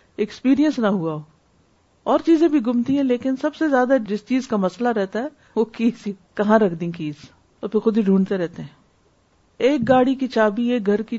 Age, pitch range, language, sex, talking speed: 50-69, 190-265 Hz, Urdu, female, 210 wpm